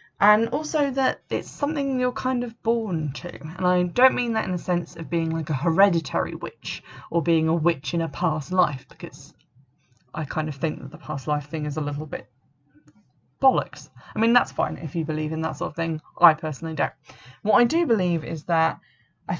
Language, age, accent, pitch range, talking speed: English, 20-39, British, 150-185 Hz, 215 wpm